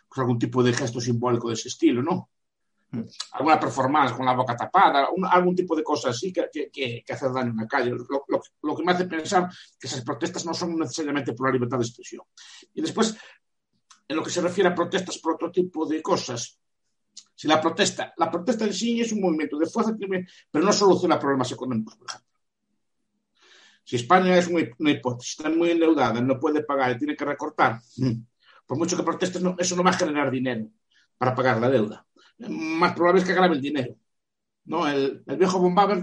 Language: Spanish